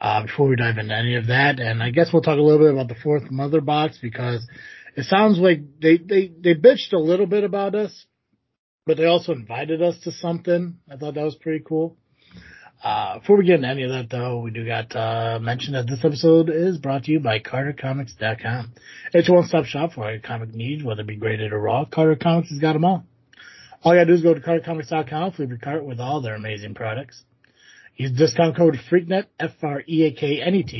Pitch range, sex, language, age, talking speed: 120-165 Hz, male, English, 30-49, 220 wpm